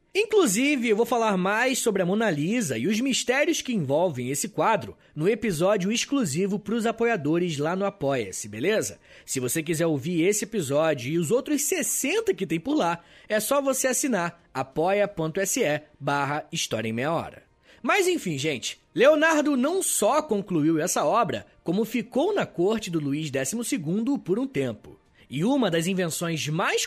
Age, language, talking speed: 20-39, Portuguese, 165 wpm